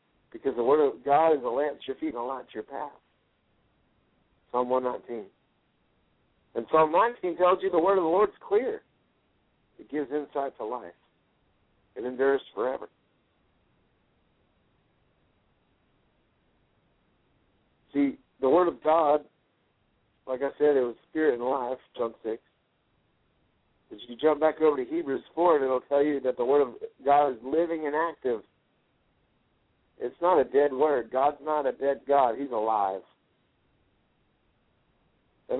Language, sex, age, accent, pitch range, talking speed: English, male, 60-79, American, 130-180 Hz, 150 wpm